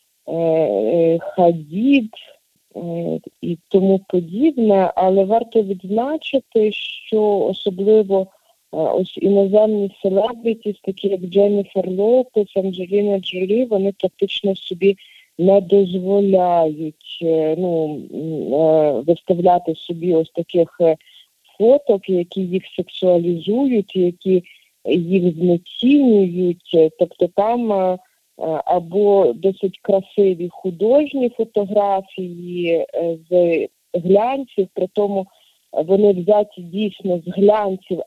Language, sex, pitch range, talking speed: English, female, 170-205 Hz, 80 wpm